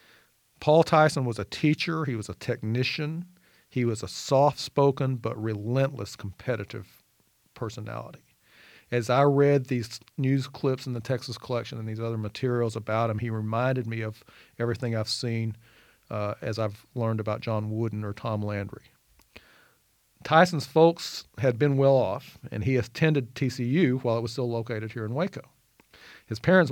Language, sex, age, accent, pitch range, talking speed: English, male, 40-59, American, 115-140 Hz, 155 wpm